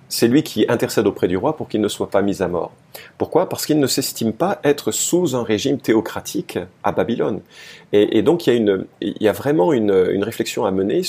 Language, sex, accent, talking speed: French, male, French, 240 wpm